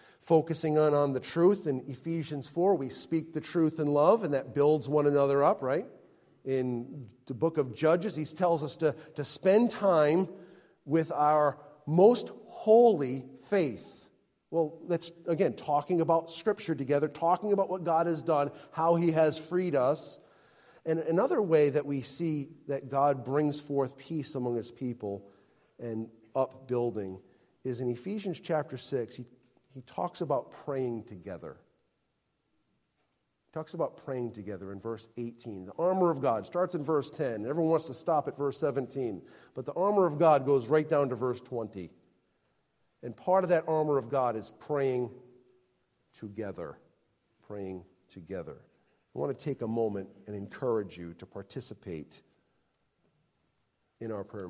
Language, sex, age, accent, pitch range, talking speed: English, male, 40-59, American, 125-165 Hz, 155 wpm